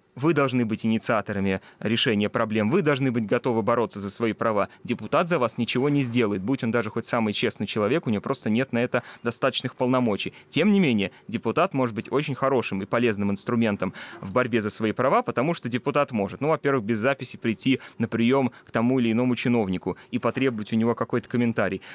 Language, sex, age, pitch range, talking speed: Russian, male, 20-39, 110-135 Hz, 200 wpm